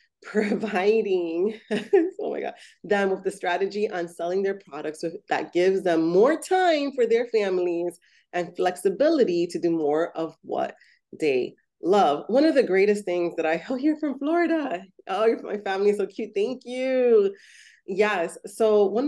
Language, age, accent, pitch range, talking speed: English, 30-49, American, 175-255 Hz, 165 wpm